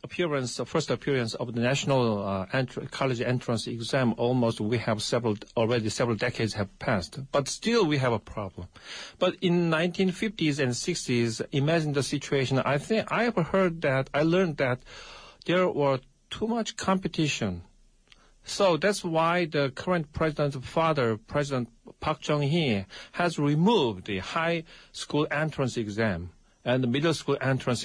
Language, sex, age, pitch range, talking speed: English, male, 50-69, 115-160 Hz, 150 wpm